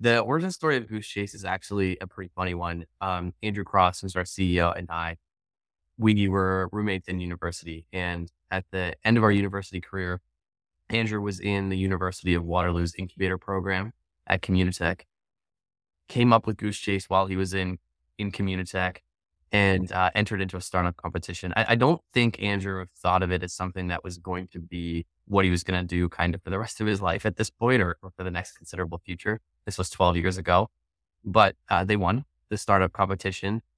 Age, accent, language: 20-39, American, English